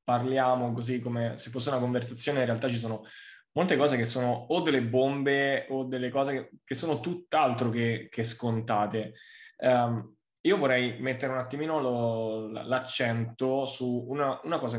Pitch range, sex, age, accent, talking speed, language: 115-135 Hz, male, 20-39, native, 160 wpm, Italian